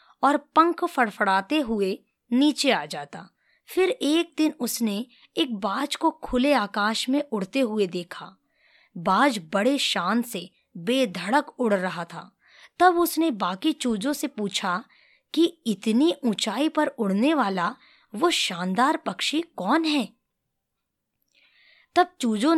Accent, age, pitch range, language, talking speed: native, 20-39, 200-295 Hz, Hindi, 125 wpm